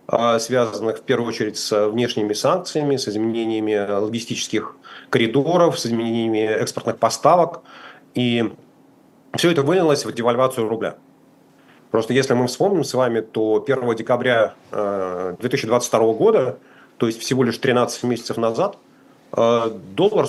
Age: 30-49